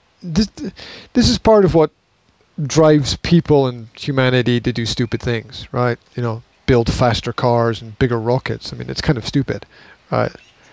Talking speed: 170 wpm